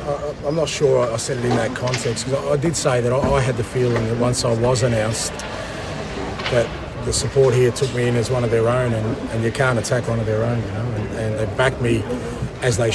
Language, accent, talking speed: English, Australian, 260 wpm